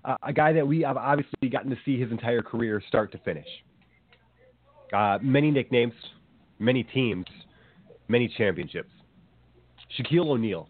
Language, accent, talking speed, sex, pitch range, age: English, American, 140 wpm, male, 105-130 Hz, 30-49